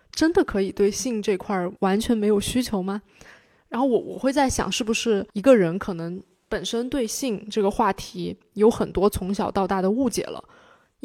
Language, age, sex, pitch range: Chinese, 20-39, female, 195-240 Hz